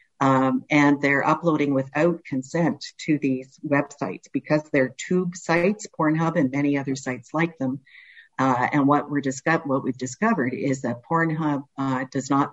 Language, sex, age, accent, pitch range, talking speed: English, female, 50-69, American, 130-150 Hz, 165 wpm